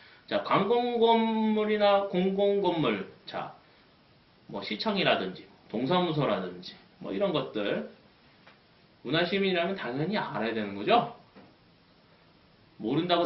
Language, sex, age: Korean, male, 30-49